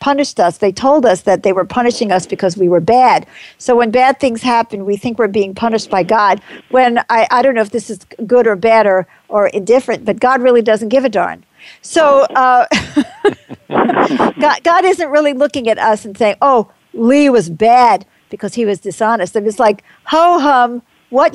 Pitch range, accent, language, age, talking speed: 210-270 Hz, American, English, 50-69, 200 wpm